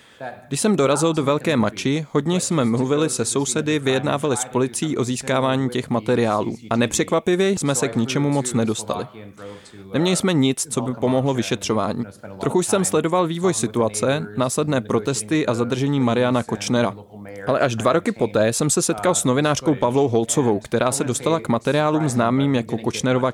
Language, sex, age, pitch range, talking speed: Czech, male, 20-39, 115-145 Hz, 165 wpm